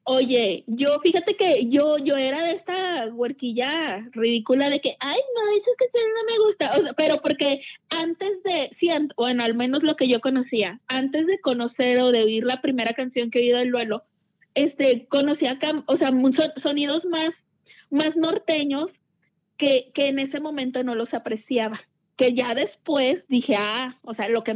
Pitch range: 230-290 Hz